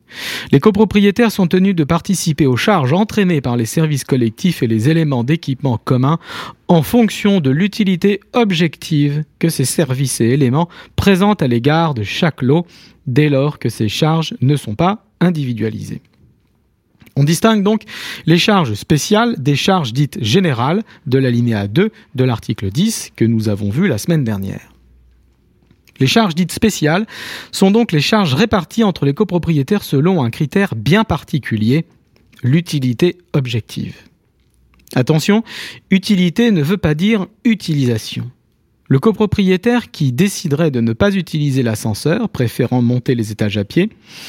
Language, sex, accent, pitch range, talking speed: French, male, French, 125-190 Hz, 145 wpm